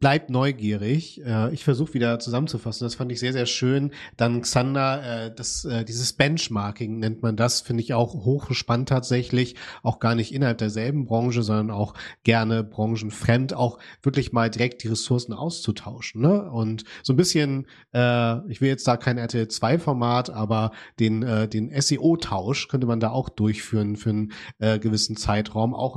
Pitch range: 110-130 Hz